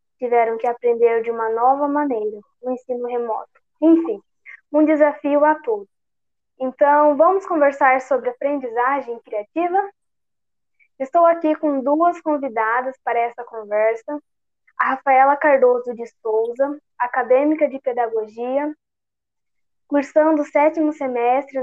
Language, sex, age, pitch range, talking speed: Portuguese, female, 10-29, 245-295 Hz, 115 wpm